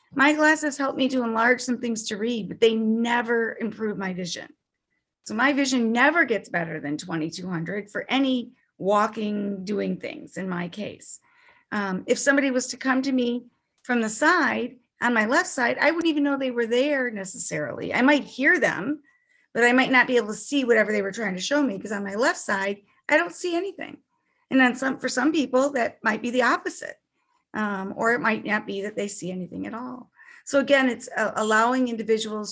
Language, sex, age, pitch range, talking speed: English, female, 40-59, 215-270 Hz, 205 wpm